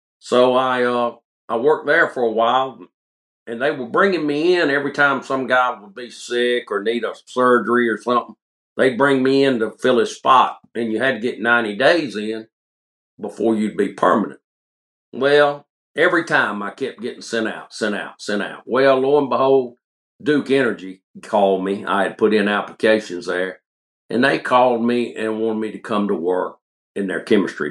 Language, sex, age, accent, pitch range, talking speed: English, male, 50-69, American, 95-125 Hz, 190 wpm